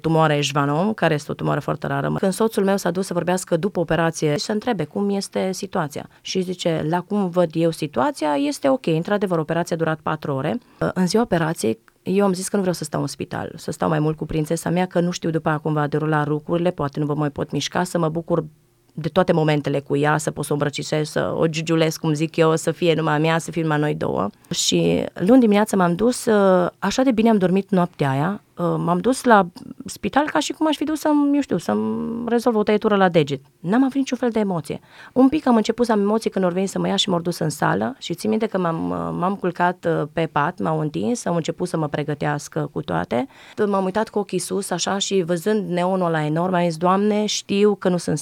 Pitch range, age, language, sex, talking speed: 155-200 Hz, 30-49, Romanian, female, 235 wpm